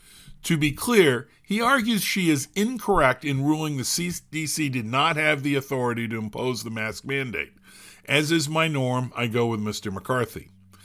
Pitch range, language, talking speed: 120-170 Hz, English, 170 wpm